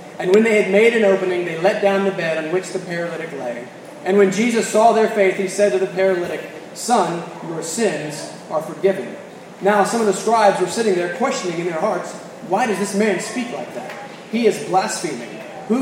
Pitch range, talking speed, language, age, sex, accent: 175-210 Hz, 215 wpm, English, 30-49, male, American